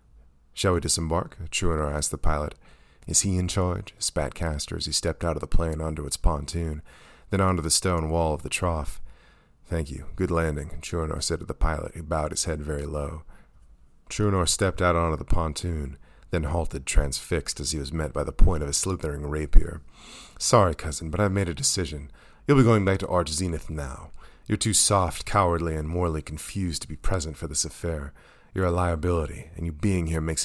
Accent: American